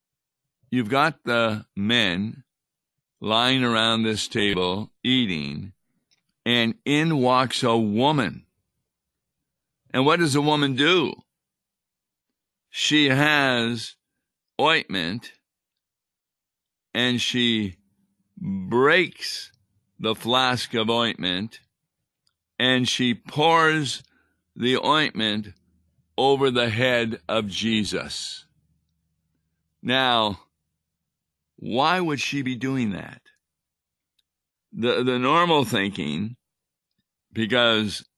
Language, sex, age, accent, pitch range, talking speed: English, male, 50-69, American, 105-130 Hz, 80 wpm